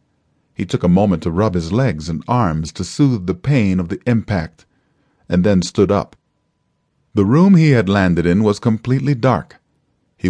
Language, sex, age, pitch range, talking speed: English, male, 40-59, 90-130 Hz, 180 wpm